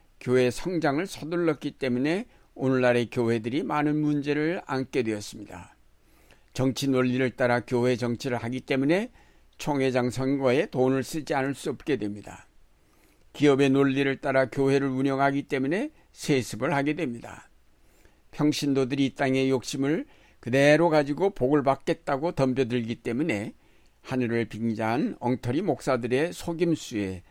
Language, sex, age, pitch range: Korean, male, 60-79, 115-150 Hz